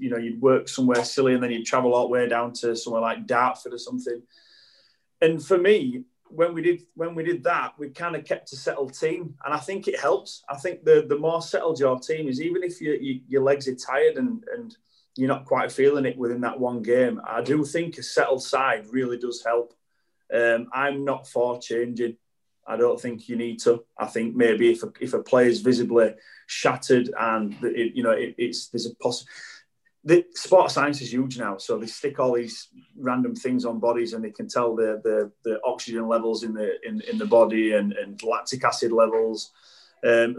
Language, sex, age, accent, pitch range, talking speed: English, male, 30-49, British, 120-170 Hz, 215 wpm